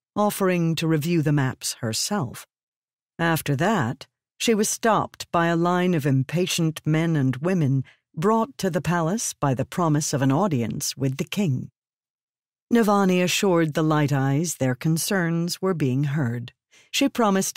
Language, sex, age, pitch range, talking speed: English, female, 50-69, 135-185 Hz, 150 wpm